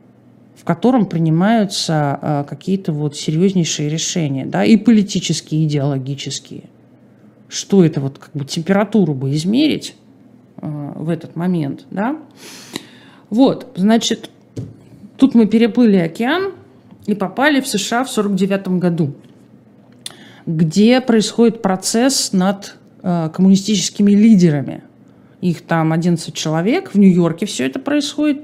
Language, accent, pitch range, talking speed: Russian, native, 160-220 Hz, 110 wpm